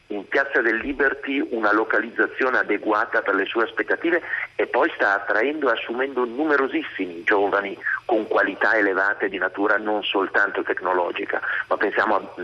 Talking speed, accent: 140 wpm, native